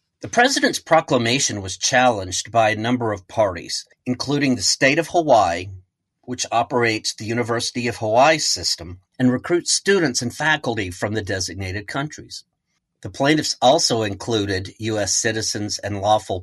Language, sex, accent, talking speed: English, male, American, 140 wpm